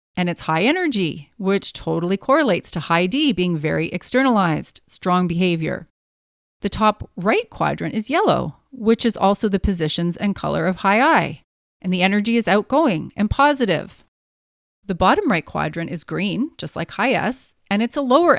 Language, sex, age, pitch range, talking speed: English, female, 30-49, 170-225 Hz, 170 wpm